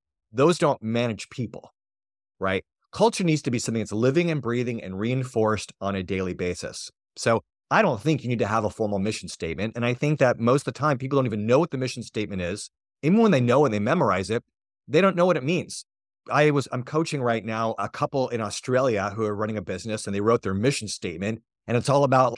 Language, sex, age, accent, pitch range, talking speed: English, male, 30-49, American, 110-150 Hz, 235 wpm